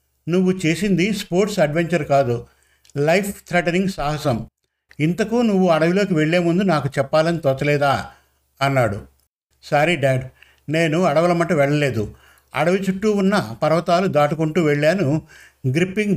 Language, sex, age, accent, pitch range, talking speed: Telugu, male, 50-69, native, 145-185 Hz, 110 wpm